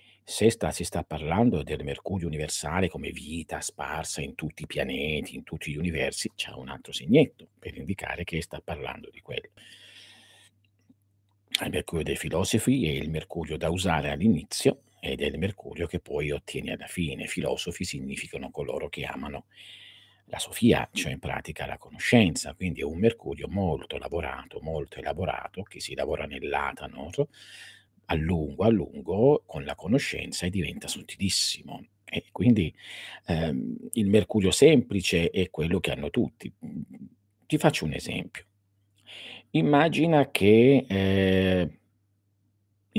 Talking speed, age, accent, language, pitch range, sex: 140 wpm, 50-69, native, Italian, 85-105 Hz, male